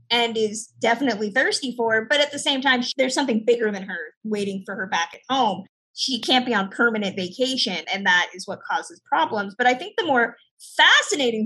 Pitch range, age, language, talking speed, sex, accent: 200-255 Hz, 20-39, English, 210 wpm, female, American